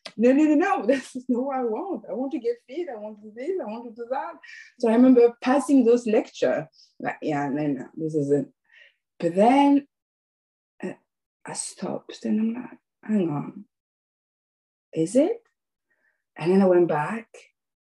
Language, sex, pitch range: English, female, 180-240 Hz